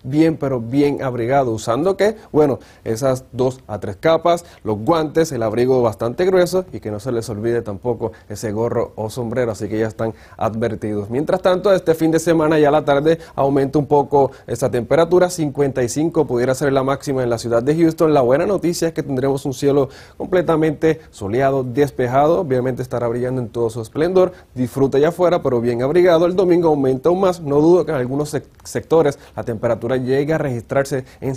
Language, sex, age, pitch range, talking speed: Spanish, male, 30-49, 120-155 Hz, 190 wpm